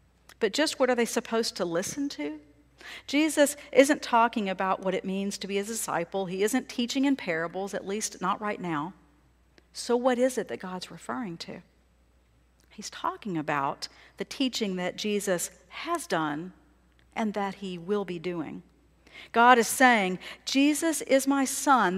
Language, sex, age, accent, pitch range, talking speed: English, female, 50-69, American, 175-250 Hz, 165 wpm